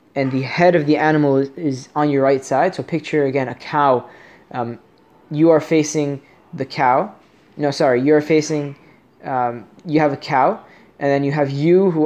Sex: male